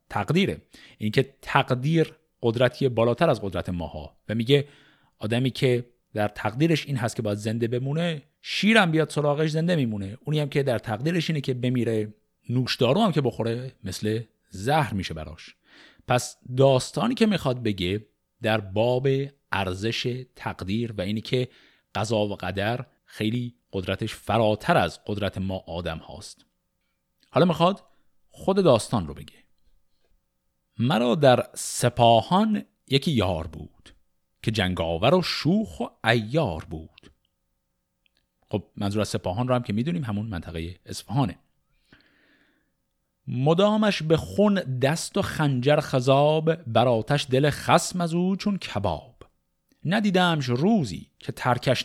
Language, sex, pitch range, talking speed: Persian, male, 105-145 Hz, 130 wpm